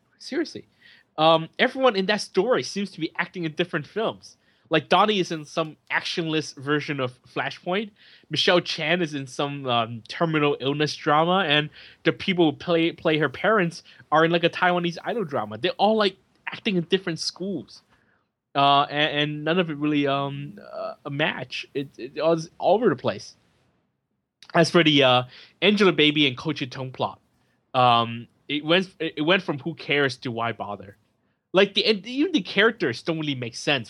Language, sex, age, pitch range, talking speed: English, male, 20-39, 130-175 Hz, 180 wpm